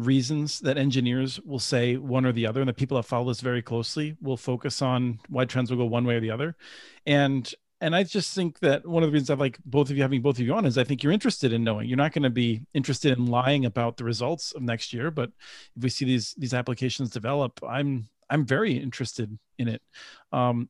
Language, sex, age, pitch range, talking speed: English, male, 40-59, 120-140 Hz, 245 wpm